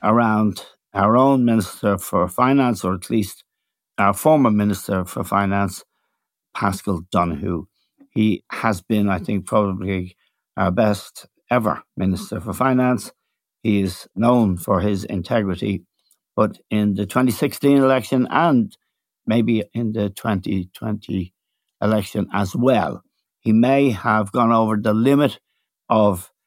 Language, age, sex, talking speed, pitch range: English, 60-79, male, 125 wpm, 100-125 Hz